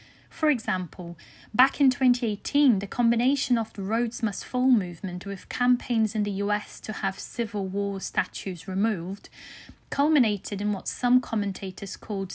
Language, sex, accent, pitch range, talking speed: English, female, British, 190-240 Hz, 145 wpm